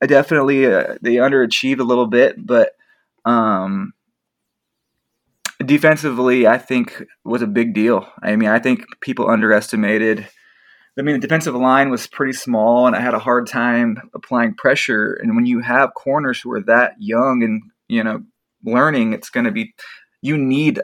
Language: English